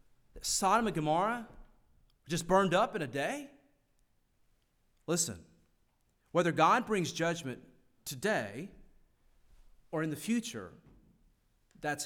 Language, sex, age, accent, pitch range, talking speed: English, male, 40-59, American, 135-205 Hz, 100 wpm